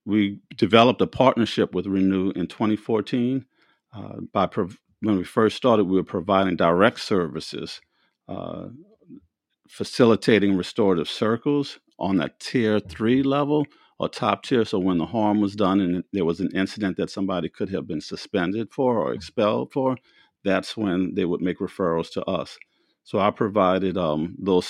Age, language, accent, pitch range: 50-69, English, American, 90-110 Hz